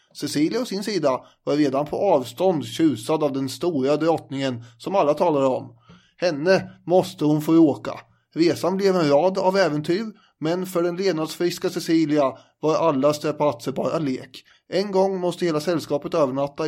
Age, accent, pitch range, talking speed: 30-49, Swedish, 145-175 Hz, 160 wpm